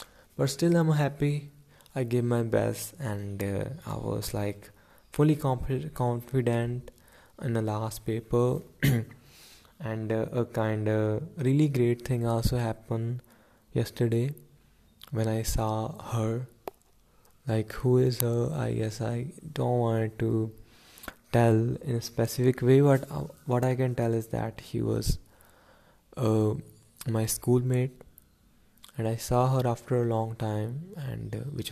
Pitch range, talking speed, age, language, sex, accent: 110-130 Hz, 135 wpm, 20-39, English, male, Indian